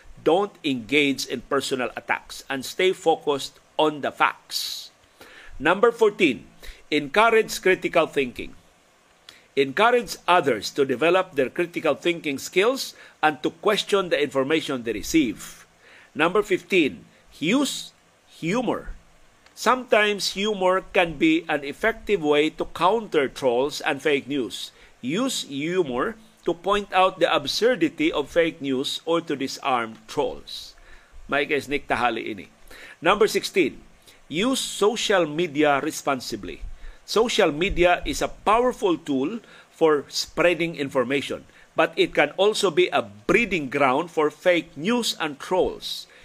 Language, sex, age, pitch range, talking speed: Filipino, male, 50-69, 150-210 Hz, 120 wpm